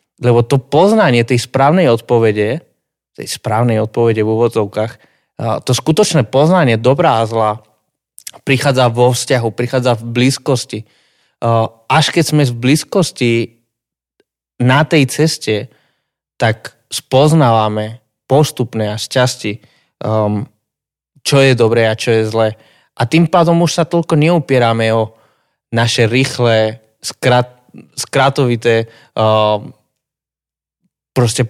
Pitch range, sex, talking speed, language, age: 110-140 Hz, male, 105 wpm, Slovak, 20-39